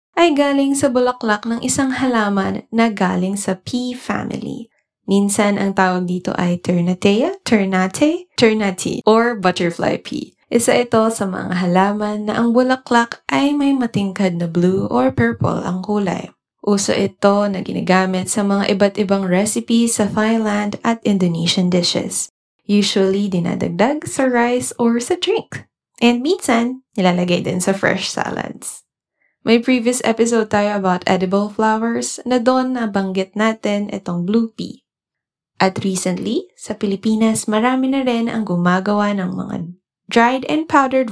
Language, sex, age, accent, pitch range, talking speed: Filipino, female, 20-39, native, 190-240 Hz, 140 wpm